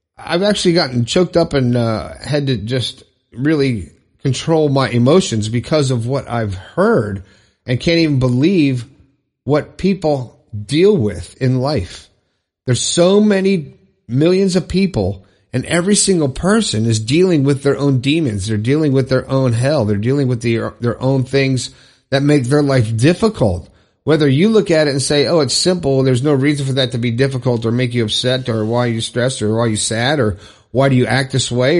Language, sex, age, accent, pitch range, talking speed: English, male, 50-69, American, 115-155 Hz, 190 wpm